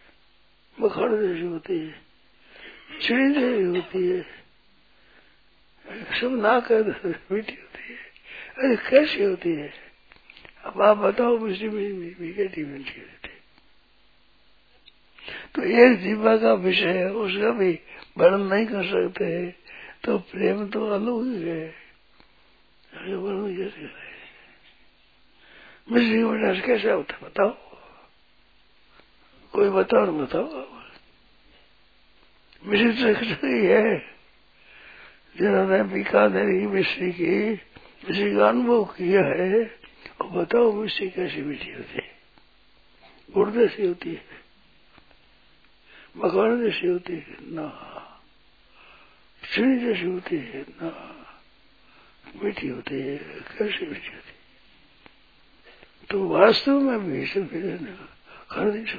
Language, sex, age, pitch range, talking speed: Hindi, male, 60-79, 190-240 Hz, 100 wpm